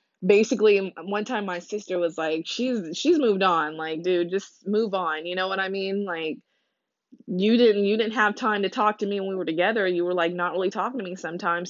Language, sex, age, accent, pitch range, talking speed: English, female, 20-39, American, 175-210 Hz, 230 wpm